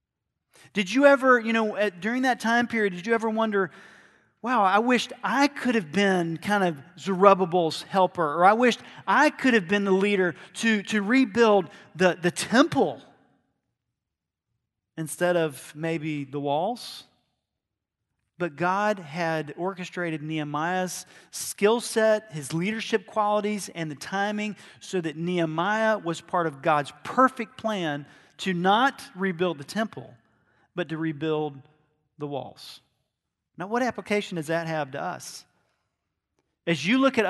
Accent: American